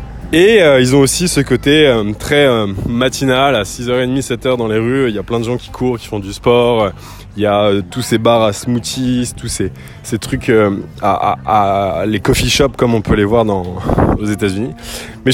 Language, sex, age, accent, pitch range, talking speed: French, male, 20-39, French, 105-130 Hz, 235 wpm